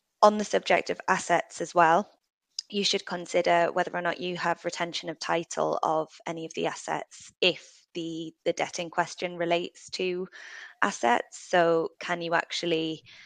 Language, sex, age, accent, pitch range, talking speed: English, female, 20-39, British, 165-180 Hz, 165 wpm